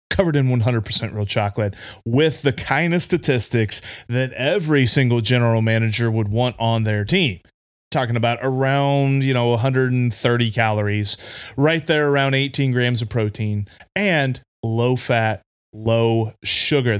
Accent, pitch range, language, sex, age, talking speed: American, 115-155 Hz, English, male, 30-49, 140 wpm